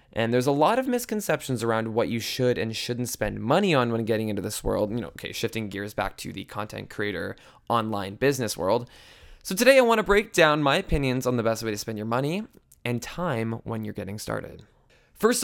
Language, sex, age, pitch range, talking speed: English, male, 20-39, 115-140 Hz, 220 wpm